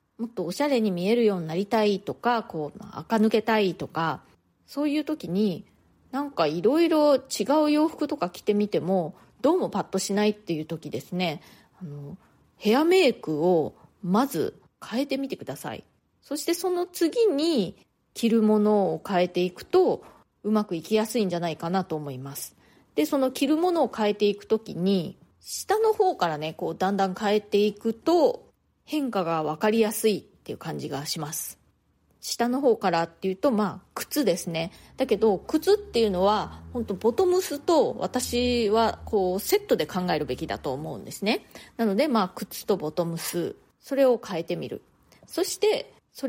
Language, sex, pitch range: Japanese, female, 175-275 Hz